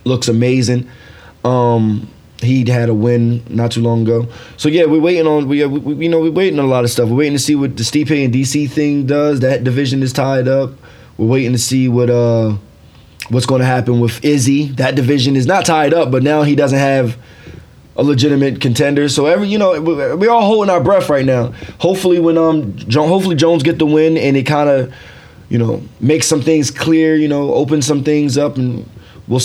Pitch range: 120-145 Hz